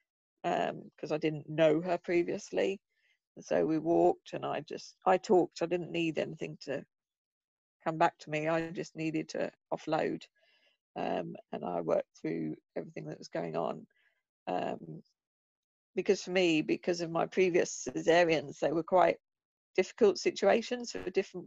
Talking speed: 150 wpm